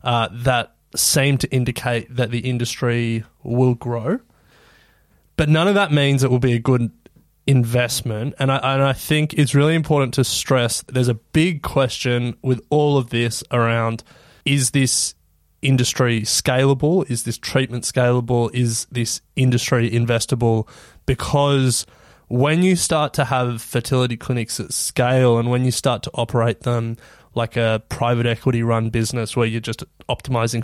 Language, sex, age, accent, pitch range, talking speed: English, male, 20-39, Australian, 115-135 Hz, 155 wpm